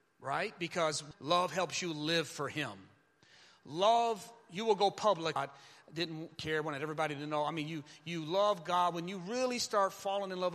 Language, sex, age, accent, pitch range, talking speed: English, male, 30-49, American, 145-175 Hz, 190 wpm